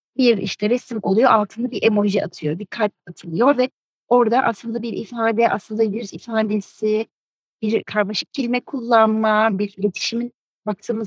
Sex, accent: female, native